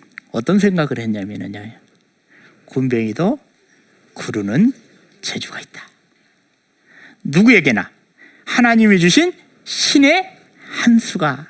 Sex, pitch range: male, 155-235 Hz